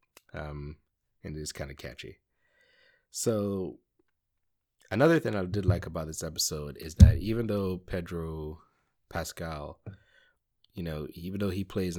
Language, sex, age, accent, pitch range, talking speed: English, male, 20-39, American, 75-90 Hz, 135 wpm